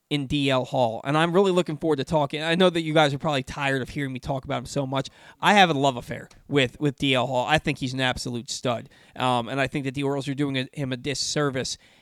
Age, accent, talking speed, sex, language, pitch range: 20-39, American, 270 wpm, male, English, 135-175 Hz